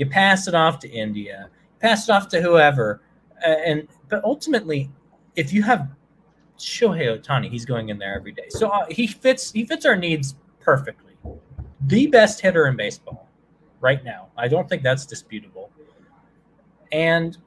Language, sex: English, male